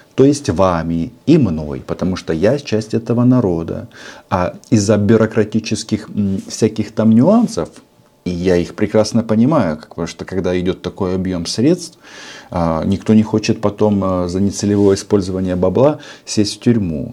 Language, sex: Russian, male